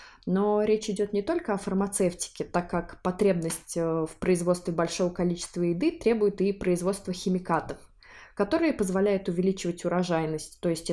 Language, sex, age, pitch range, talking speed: Russian, female, 20-39, 170-210 Hz, 135 wpm